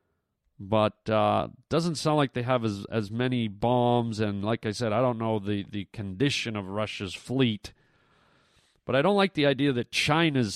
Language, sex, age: English, male, 40-59